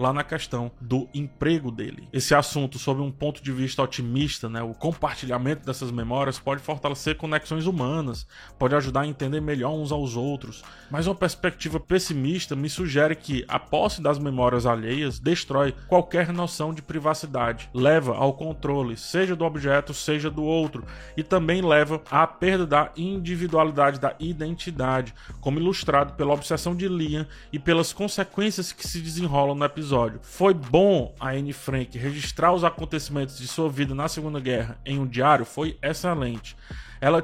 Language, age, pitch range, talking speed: Portuguese, 20-39, 135-175 Hz, 160 wpm